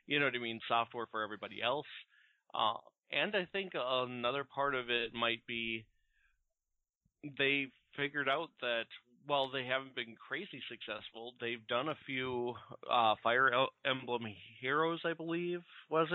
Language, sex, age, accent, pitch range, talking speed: English, male, 30-49, American, 115-145 Hz, 150 wpm